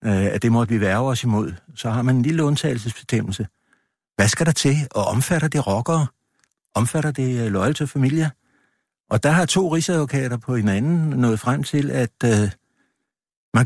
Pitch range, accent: 120-155 Hz, native